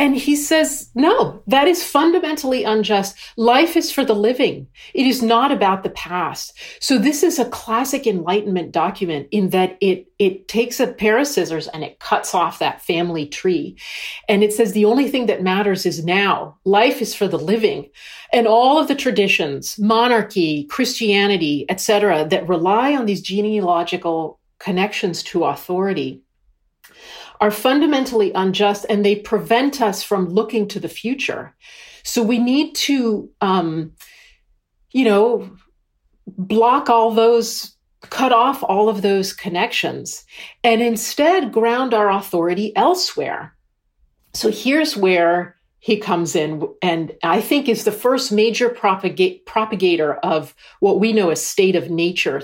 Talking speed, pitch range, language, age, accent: 150 wpm, 185-240 Hz, English, 40-59, American